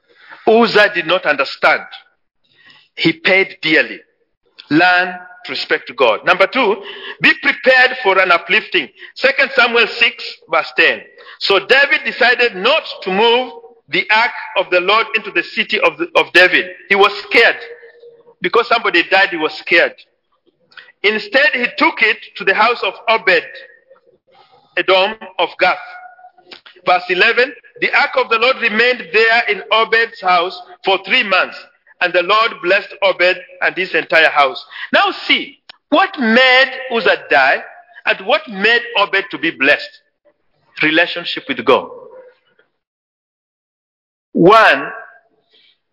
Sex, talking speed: male, 135 wpm